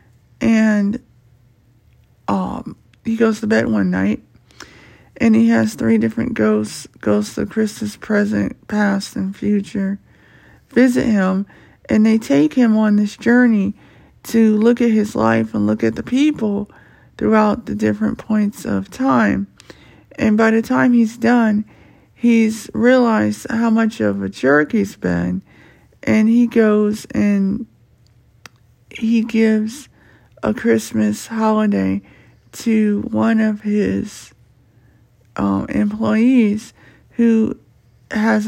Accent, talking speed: American, 120 wpm